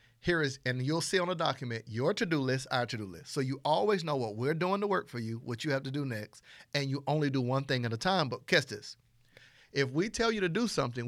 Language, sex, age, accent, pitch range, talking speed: English, male, 50-69, American, 125-160 Hz, 270 wpm